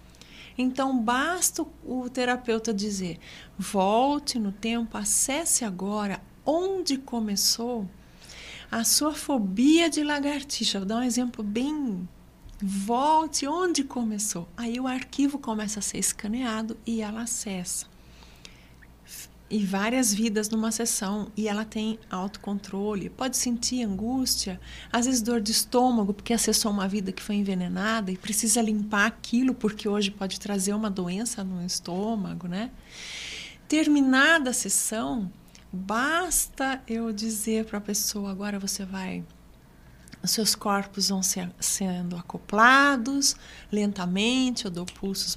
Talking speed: 125 wpm